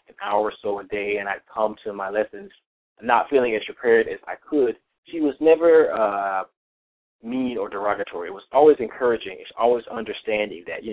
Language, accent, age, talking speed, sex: English, American, 20-39, 190 wpm, male